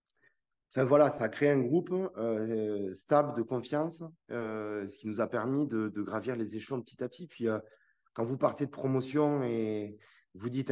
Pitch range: 100-125 Hz